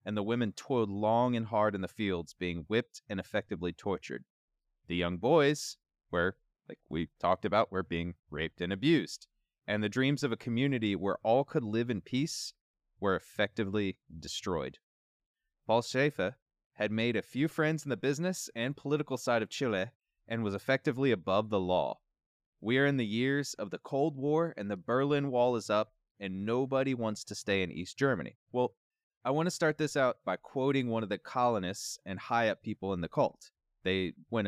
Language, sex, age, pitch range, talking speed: English, male, 20-39, 100-135 Hz, 190 wpm